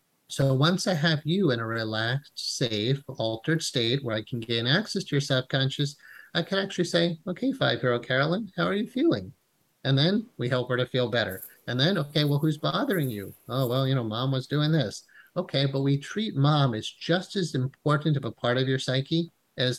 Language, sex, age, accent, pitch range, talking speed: English, male, 30-49, American, 120-160 Hz, 210 wpm